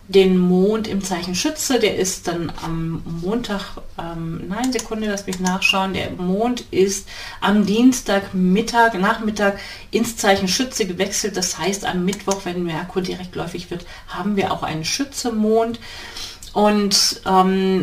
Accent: German